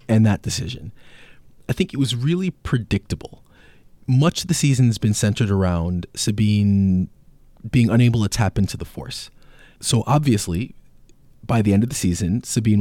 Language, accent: English, American